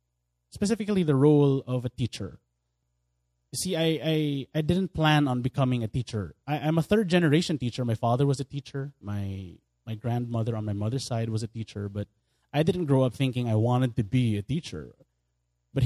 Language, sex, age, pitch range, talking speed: English, male, 20-39, 110-145 Hz, 190 wpm